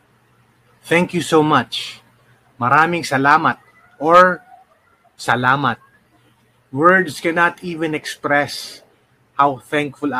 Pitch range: 125-150 Hz